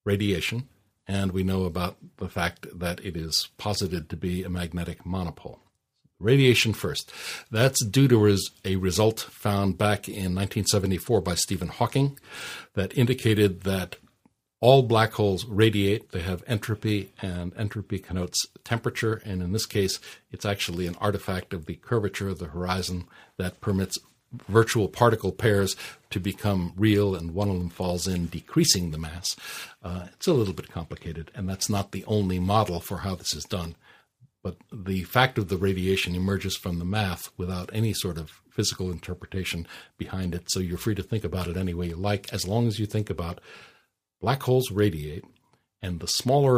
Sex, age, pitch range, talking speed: male, 60-79, 90-110 Hz, 170 wpm